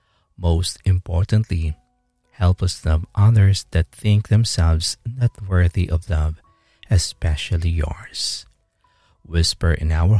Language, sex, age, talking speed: English, male, 50-69, 105 wpm